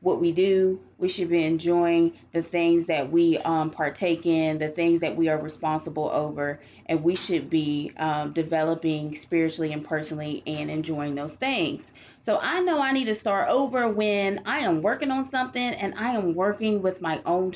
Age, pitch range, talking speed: 30-49, 155-205 Hz, 190 wpm